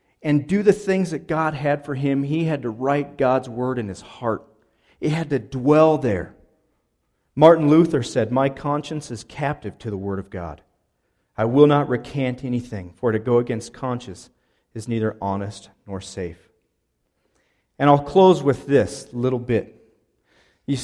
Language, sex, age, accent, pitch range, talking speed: English, male, 40-59, American, 105-145 Hz, 170 wpm